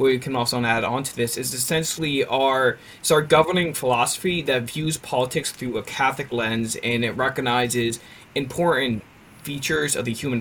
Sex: male